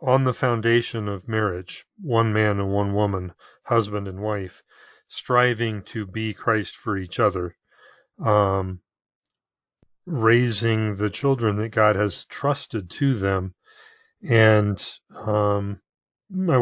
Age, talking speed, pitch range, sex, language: 40-59, 120 wpm, 105-130 Hz, male, English